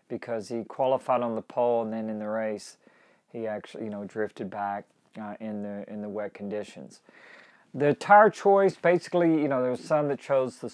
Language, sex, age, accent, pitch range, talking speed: English, male, 40-59, American, 105-125 Hz, 200 wpm